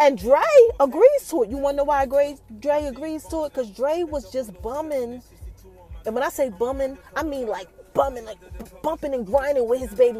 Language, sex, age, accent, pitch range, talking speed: English, female, 30-49, American, 245-395 Hz, 205 wpm